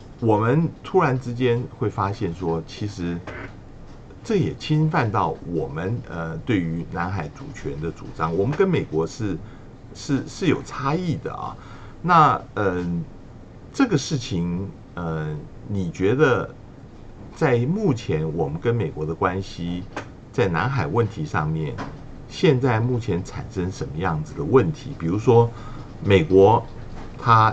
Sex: male